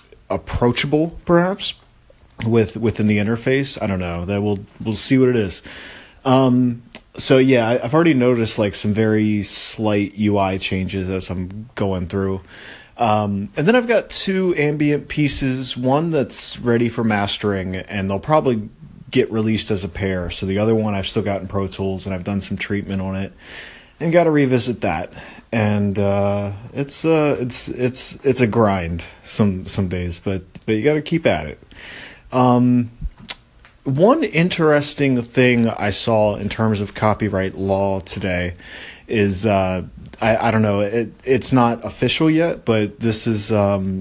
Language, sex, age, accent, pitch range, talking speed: English, male, 30-49, American, 95-125 Hz, 170 wpm